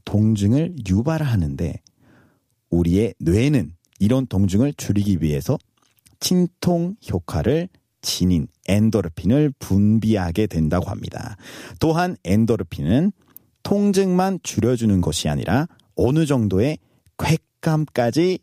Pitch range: 100-150 Hz